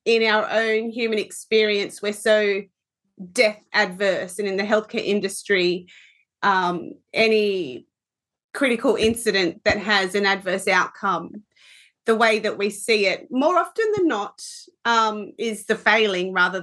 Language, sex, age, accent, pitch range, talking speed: English, female, 30-49, Australian, 195-225 Hz, 135 wpm